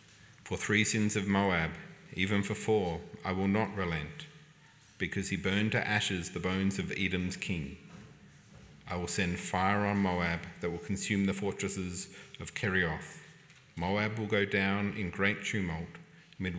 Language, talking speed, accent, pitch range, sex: English, 155 wpm, Australian, 90-105 Hz, male